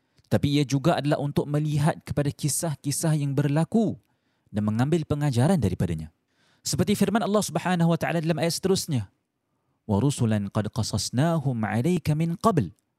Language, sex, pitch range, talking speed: Malay, male, 130-175 Hz, 135 wpm